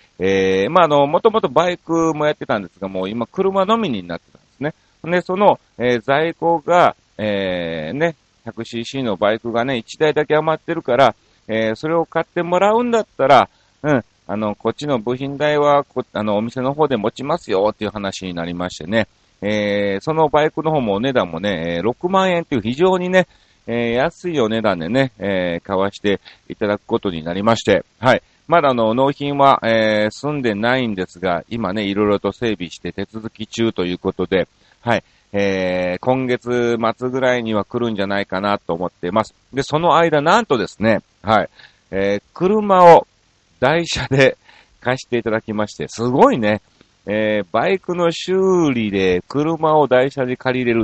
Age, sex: 40-59, male